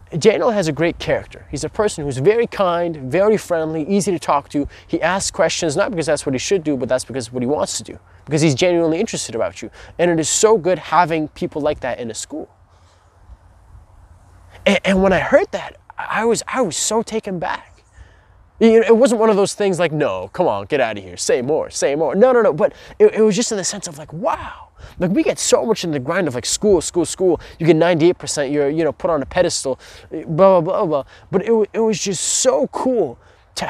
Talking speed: 235 wpm